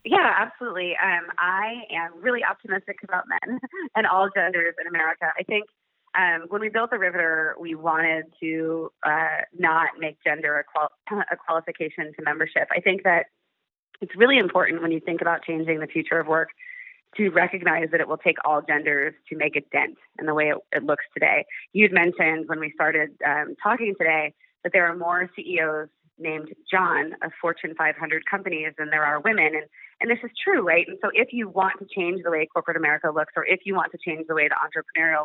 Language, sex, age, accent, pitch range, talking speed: English, female, 30-49, American, 160-200 Hz, 205 wpm